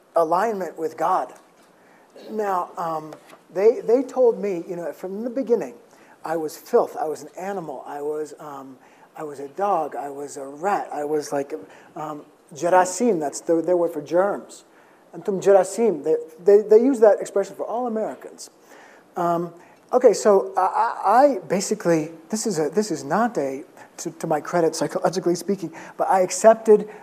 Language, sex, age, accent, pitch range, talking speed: English, male, 30-49, American, 160-205 Hz, 170 wpm